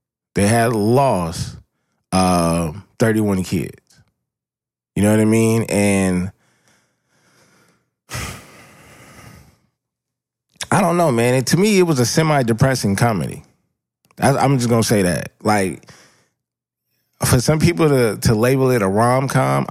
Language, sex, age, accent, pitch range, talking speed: English, male, 20-39, American, 100-130 Hz, 120 wpm